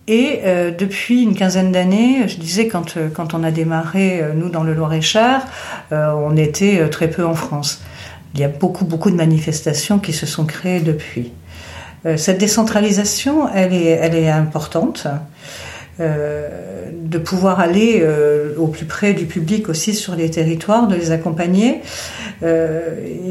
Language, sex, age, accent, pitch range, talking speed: French, female, 50-69, French, 165-220 Hz, 160 wpm